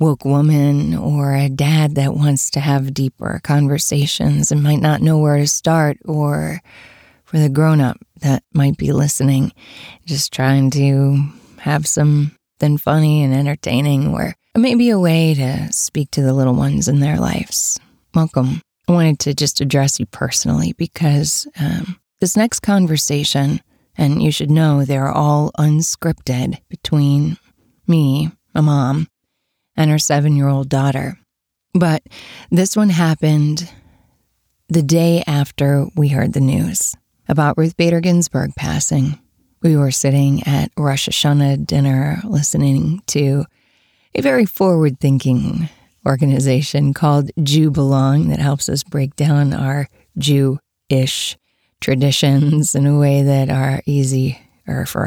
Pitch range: 135-155 Hz